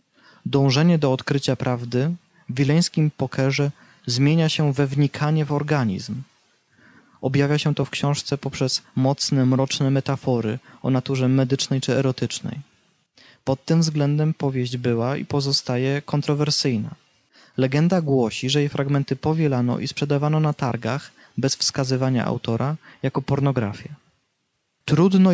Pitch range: 125-145 Hz